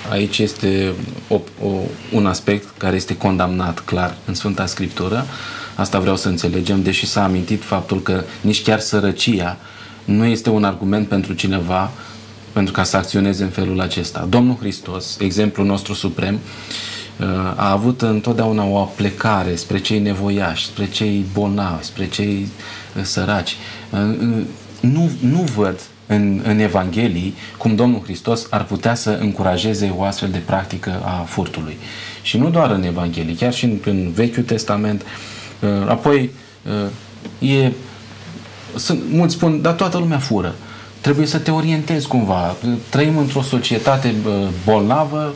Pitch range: 95-120 Hz